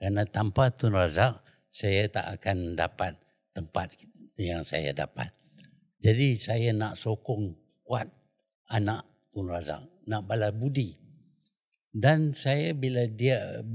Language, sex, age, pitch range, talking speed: Malay, male, 60-79, 100-145 Hz, 120 wpm